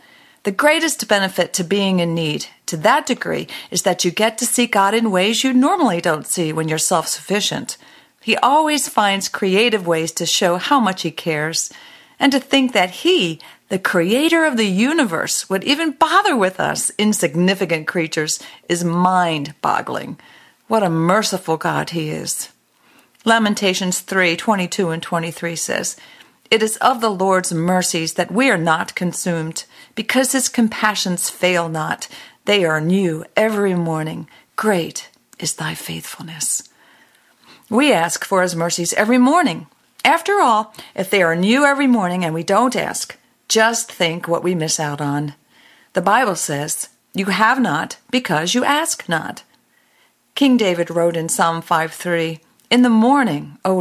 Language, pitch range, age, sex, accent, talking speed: English, 165-230 Hz, 50-69, female, American, 155 wpm